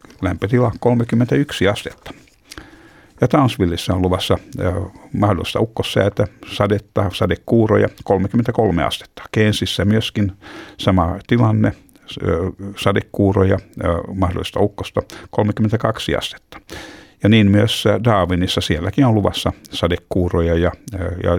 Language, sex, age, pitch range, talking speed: Finnish, male, 60-79, 90-110 Hz, 100 wpm